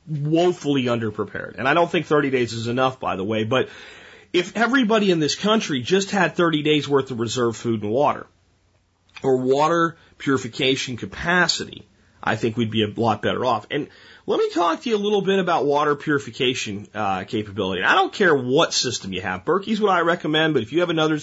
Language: English